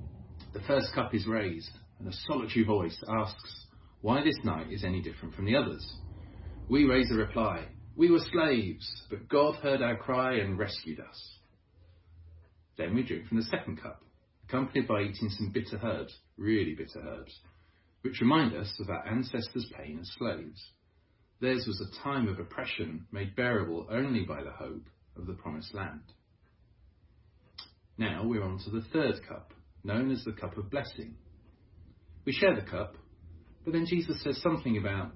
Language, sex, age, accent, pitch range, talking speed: English, male, 40-59, British, 90-115 Hz, 165 wpm